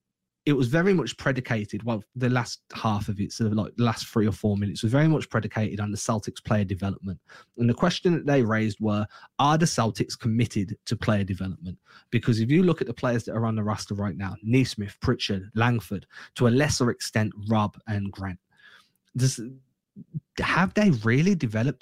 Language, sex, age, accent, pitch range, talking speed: English, male, 20-39, British, 110-130 Hz, 195 wpm